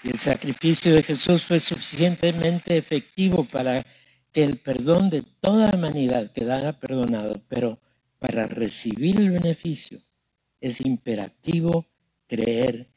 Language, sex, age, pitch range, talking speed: Spanish, male, 60-79, 115-160 Hz, 120 wpm